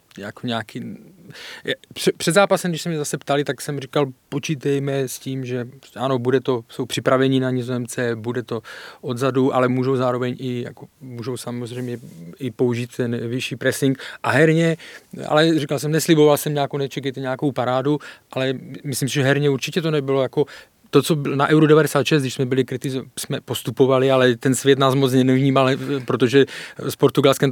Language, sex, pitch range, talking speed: Czech, male, 120-140 Hz, 170 wpm